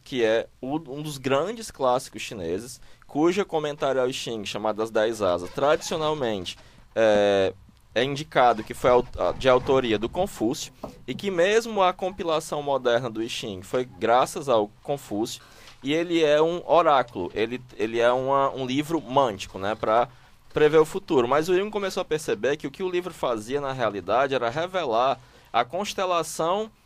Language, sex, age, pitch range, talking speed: Portuguese, male, 20-39, 120-170 Hz, 160 wpm